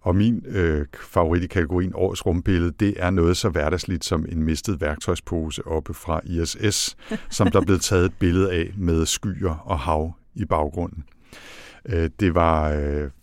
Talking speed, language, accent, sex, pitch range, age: 165 wpm, Danish, native, male, 80-100 Hz, 60-79